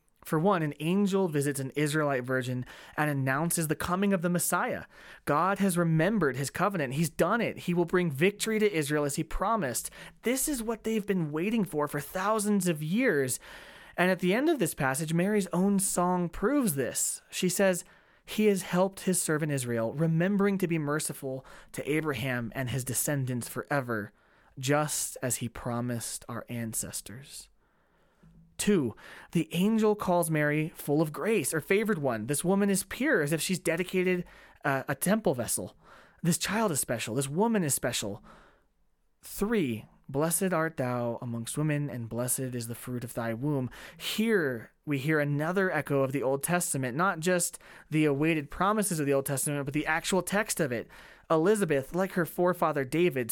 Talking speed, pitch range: 170 wpm, 140-185 Hz